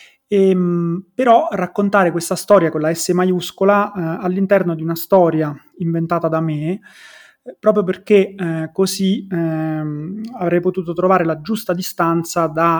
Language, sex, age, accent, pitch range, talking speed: Italian, male, 20-39, native, 160-185 Hz, 135 wpm